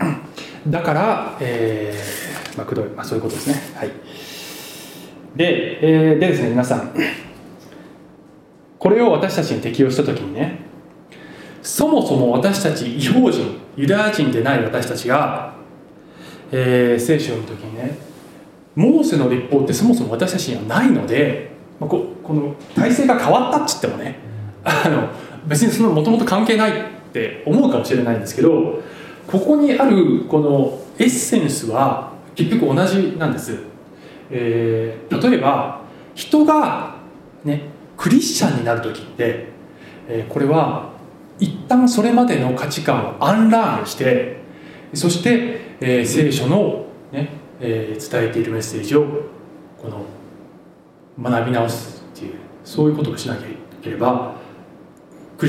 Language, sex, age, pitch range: Japanese, male, 20-39, 125-200 Hz